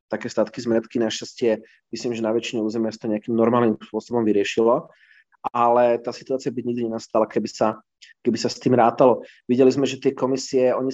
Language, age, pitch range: Slovak, 30-49, 110-125 Hz